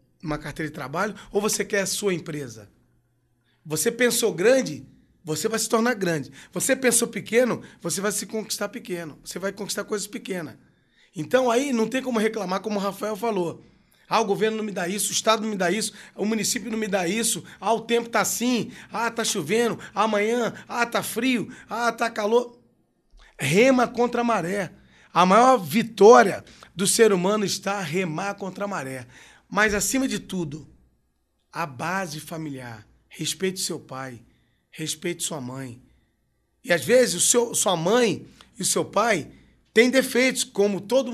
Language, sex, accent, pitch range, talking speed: Portuguese, male, Brazilian, 180-235 Hz, 170 wpm